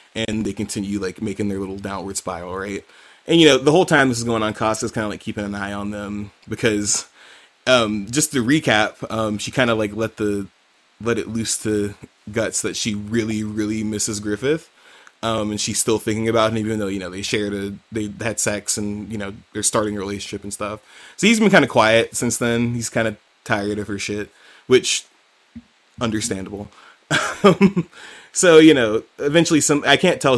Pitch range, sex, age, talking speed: 105-125 Hz, male, 20-39, 205 wpm